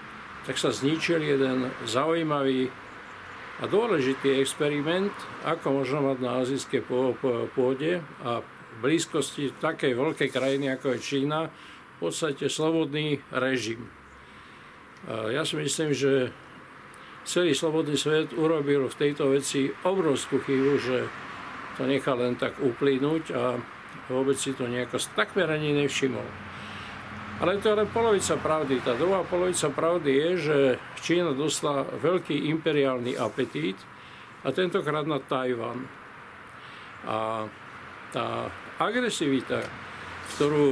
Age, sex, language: 50-69, male, Slovak